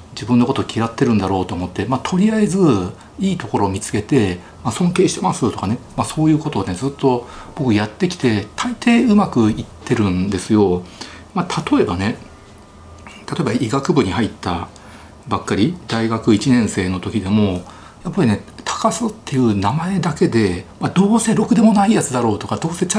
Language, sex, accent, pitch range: Japanese, male, native, 100-165 Hz